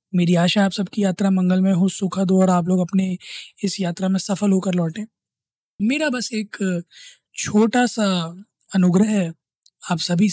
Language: Hindi